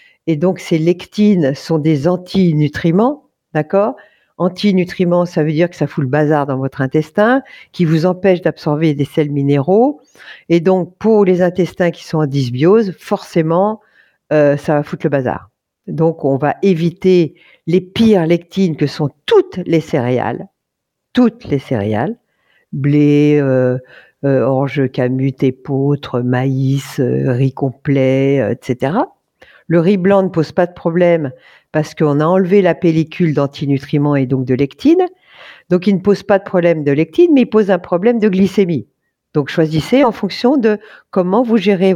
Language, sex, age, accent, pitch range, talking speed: French, female, 50-69, French, 145-195 Hz, 160 wpm